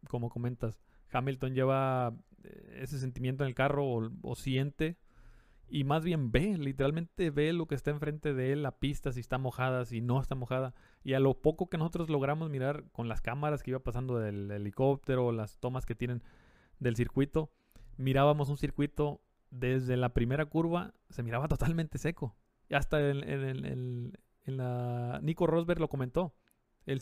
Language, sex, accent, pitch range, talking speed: Spanish, male, Mexican, 120-155 Hz, 180 wpm